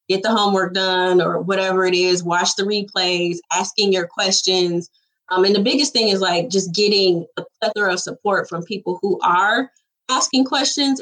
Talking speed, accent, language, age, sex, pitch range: 180 wpm, American, English, 20-39, female, 185-245 Hz